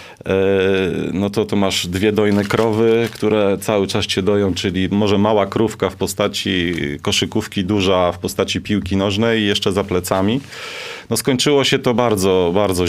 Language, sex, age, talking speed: Polish, male, 30-49, 160 wpm